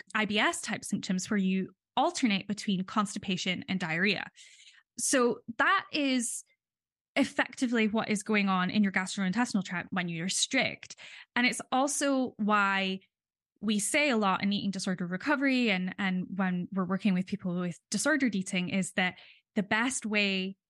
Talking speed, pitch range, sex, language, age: 150 wpm, 190-225 Hz, female, English, 10-29